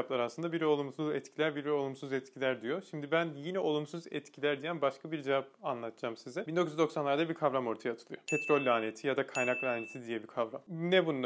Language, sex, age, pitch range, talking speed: Turkish, male, 30-49, 130-170 Hz, 185 wpm